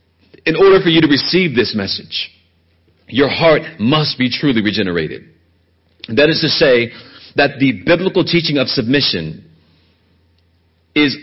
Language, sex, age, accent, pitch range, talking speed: English, male, 40-59, American, 100-170 Hz, 135 wpm